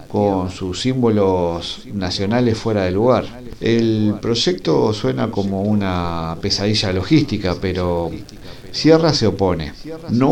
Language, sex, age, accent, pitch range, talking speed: English, male, 50-69, Argentinian, 95-120 Hz, 110 wpm